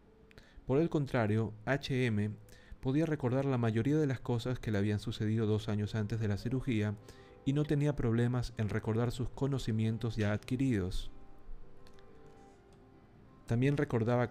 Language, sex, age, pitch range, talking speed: Spanish, male, 40-59, 105-125 Hz, 140 wpm